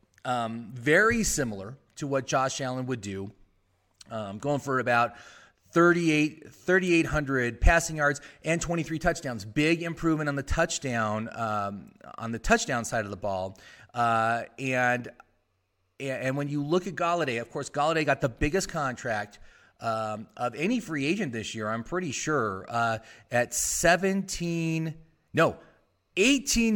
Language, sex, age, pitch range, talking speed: English, male, 30-49, 115-155 Hz, 140 wpm